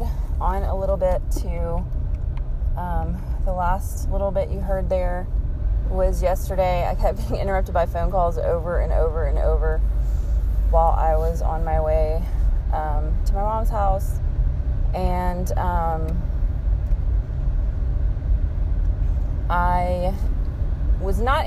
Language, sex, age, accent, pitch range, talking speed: English, female, 20-39, American, 75-90 Hz, 120 wpm